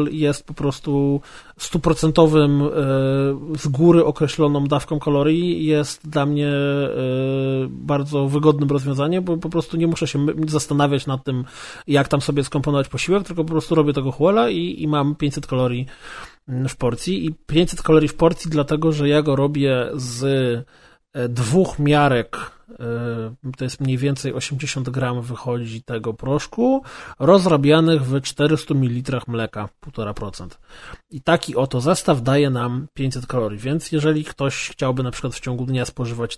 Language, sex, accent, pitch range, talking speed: Polish, male, native, 135-165 Hz, 145 wpm